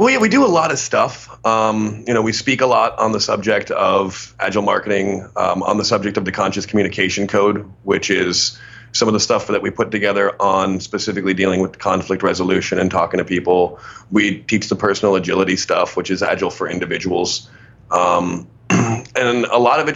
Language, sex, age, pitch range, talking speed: English, male, 30-49, 90-115 Hz, 200 wpm